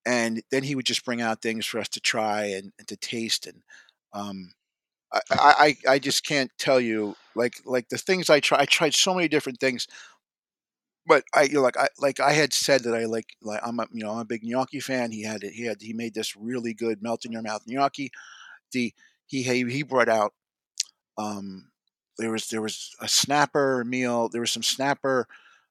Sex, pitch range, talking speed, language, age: male, 115-145 Hz, 215 wpm, English, 40-59